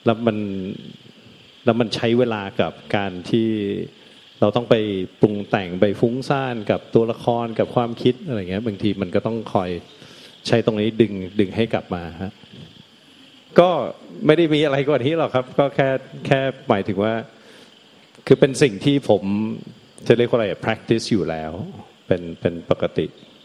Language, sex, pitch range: Thai, male, 95-115 Hz